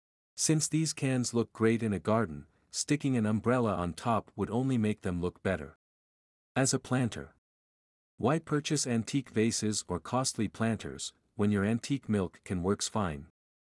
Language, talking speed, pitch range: English, 160 wpm, 90-125 Hz